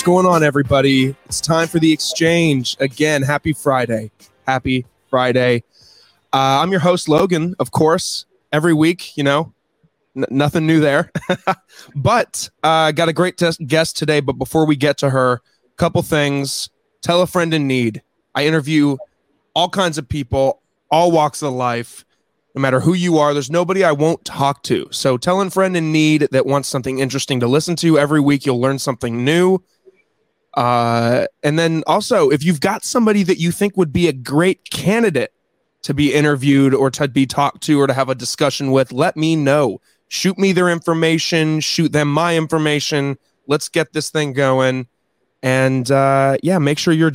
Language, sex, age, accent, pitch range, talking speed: English, male, 20-39, American, 135-170 Hz, 180 wpm